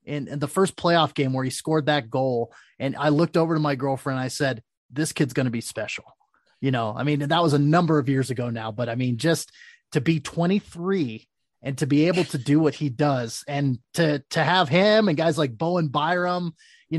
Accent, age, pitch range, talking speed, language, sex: American, 30-49, 145-185 Hz, 230 wpm, English, male